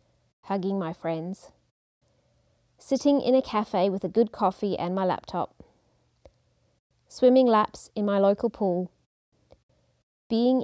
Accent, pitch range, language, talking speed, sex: Australian, 180-230 Hz, English, 120 wpm, female